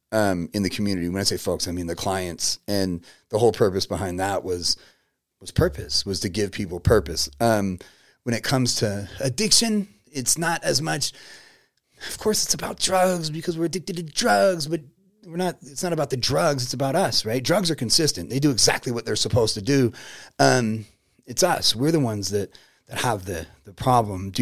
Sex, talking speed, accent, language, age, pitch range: male, 200 wpm, American, English, 30-49, 105-140 Hz